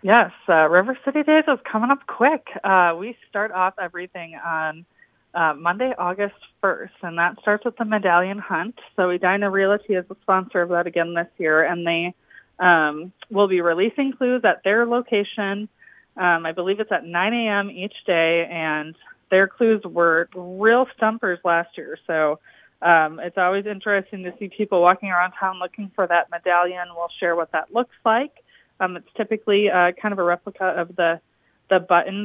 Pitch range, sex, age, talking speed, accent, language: 175-215 Hz, female, 20-39, 180 wpm, American, English